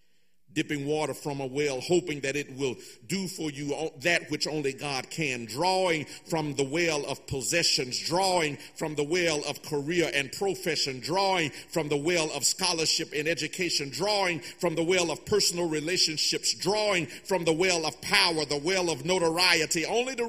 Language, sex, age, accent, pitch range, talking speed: English, male, 50-69, American, 155-205 Hz, 170 wpm